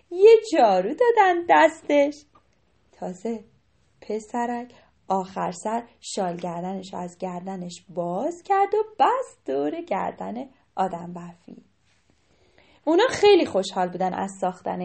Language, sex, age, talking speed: Persian, female, 10-29, 110 wpm